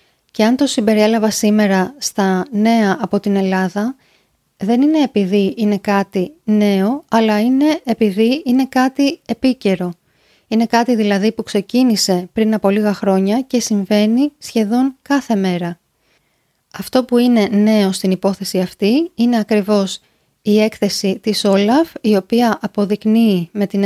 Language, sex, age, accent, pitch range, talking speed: Greek, female, 20-39, native, 200-230 Hz, 135 wpm